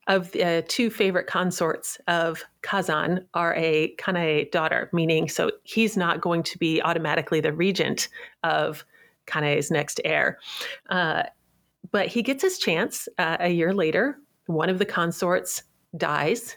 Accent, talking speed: American, 150 wpm